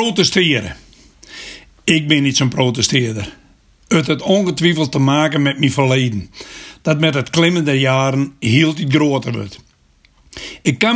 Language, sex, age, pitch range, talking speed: Dutch, male, 60-79, 130-165 Hz, 140 wpm